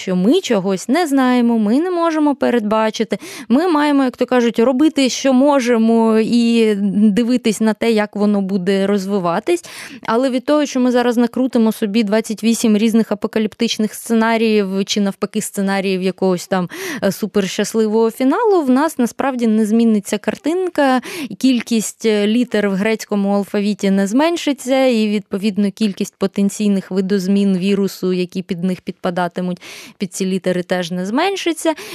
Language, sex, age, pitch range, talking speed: Ukrainian, female, 20-39, 195-245 Hz, 135 wpm